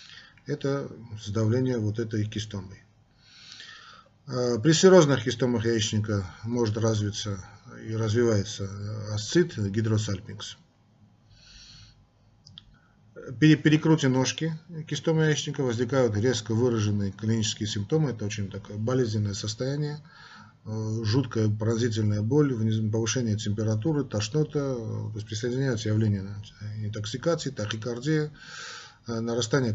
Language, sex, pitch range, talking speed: Russian, male, 110-135 Hz, 85 wpm